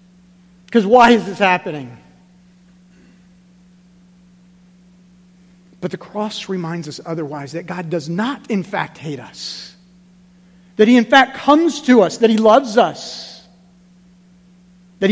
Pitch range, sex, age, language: 170-185 Hz, male, 50-69, English